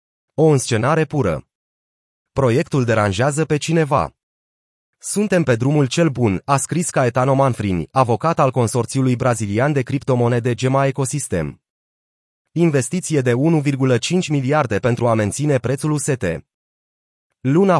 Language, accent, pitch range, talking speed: Romanian, native, 115-150 Hz, 120 wpm